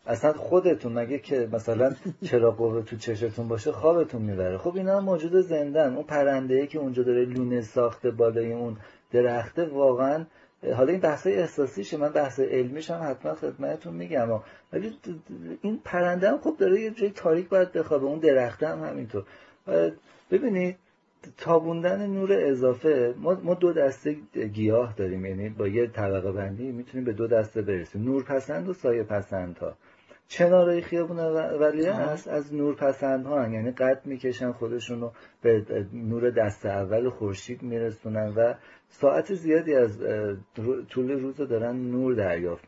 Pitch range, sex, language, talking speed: 115-160 Hz, male, Persian, 155 wpm